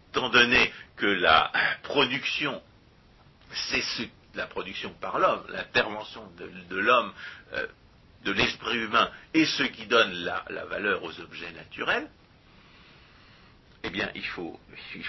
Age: 60-79